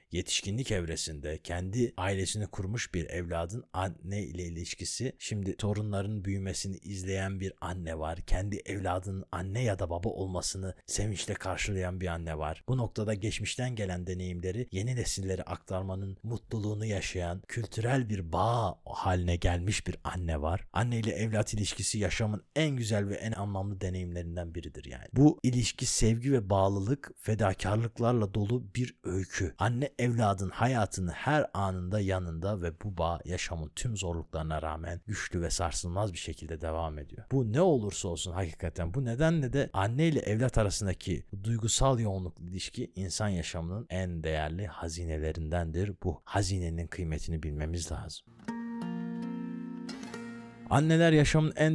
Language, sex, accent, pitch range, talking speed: Turkish, male, native, 90-115 Hz, 135 wpm